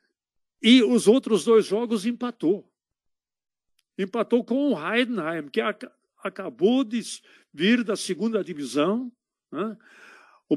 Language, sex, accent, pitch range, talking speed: Portuguese, male, Brazilian, 175-225 Hz, 115 wpm